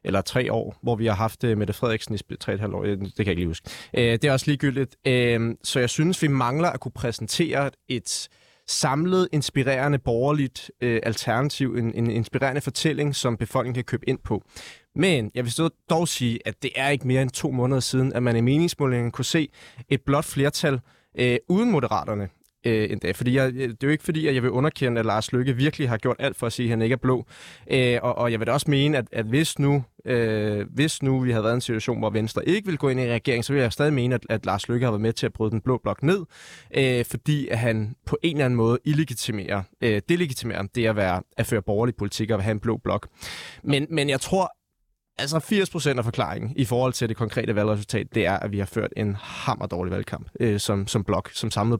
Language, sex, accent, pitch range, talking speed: Danish, male, native, 115-145 Hz, 220 wpm